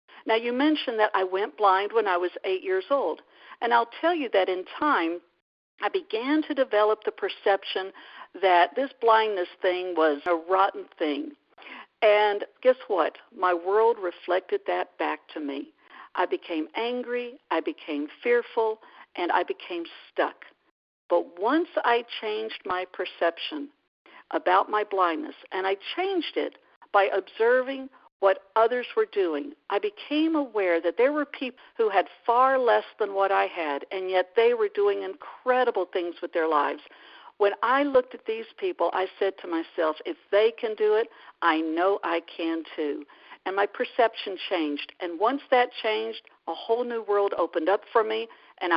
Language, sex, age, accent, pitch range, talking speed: English, female, 60-79, American, 180-290 Hz, 165 wpm